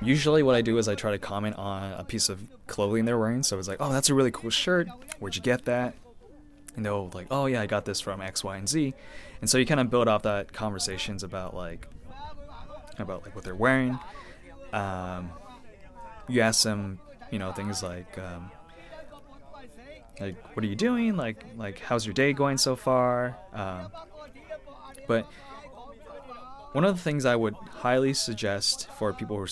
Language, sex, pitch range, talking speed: English, male, 100-130 Hz, 195 wpm